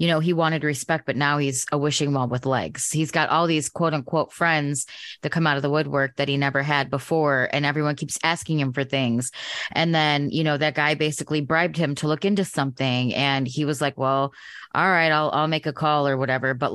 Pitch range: 140-165 Hz